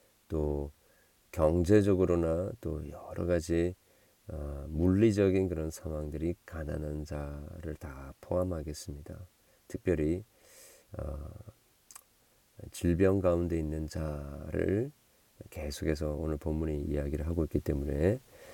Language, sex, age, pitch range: Korean, male, 40-59, 75-110 Hz